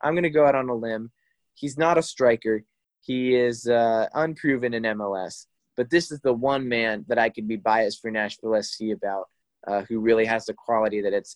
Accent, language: American, English